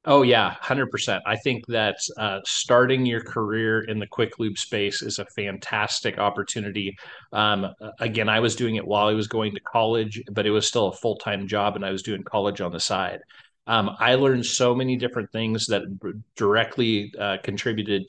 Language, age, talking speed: English, 30-49, 195 wpm